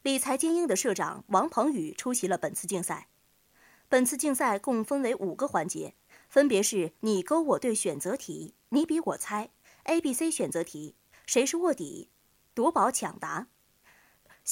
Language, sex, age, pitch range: Chinese, female, 20-39, 190-290 Hz